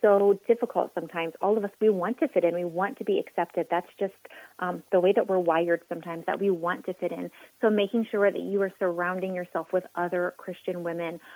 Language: English